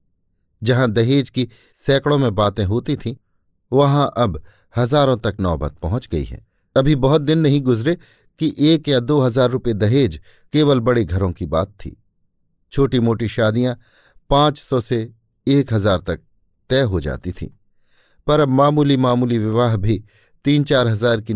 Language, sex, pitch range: Hindi, male, 95-130 Hz